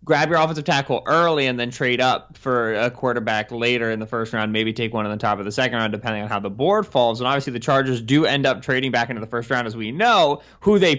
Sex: male